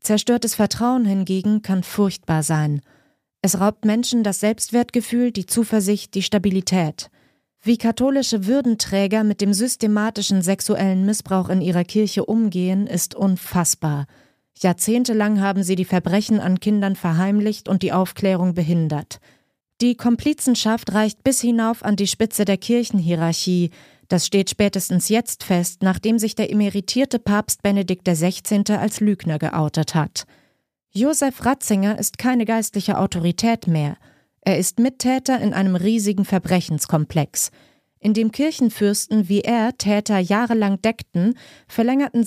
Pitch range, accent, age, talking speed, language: 180-220 Hz, German, 30-49, 130 wpm, German